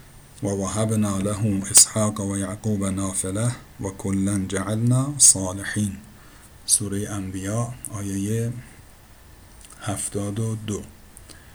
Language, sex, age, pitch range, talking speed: Persian, male, 50-69, 100-120 Hz, 75 wpm